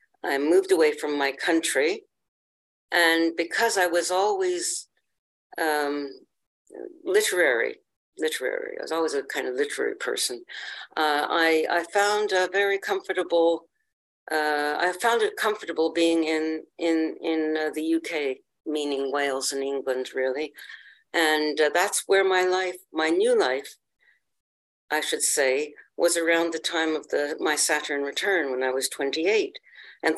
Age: 60-79